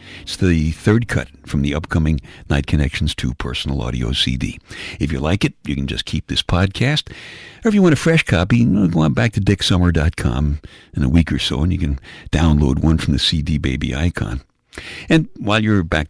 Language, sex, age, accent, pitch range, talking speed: English, male, 60-79, American, 70-115 Hz, 200 wpm